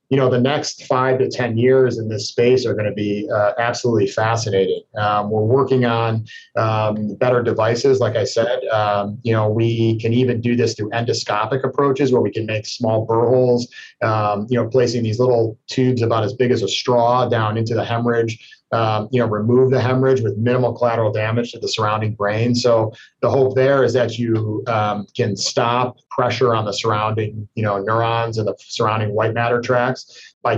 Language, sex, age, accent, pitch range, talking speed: English, male, 30-49, American, 110-125 Hz, 195 wpm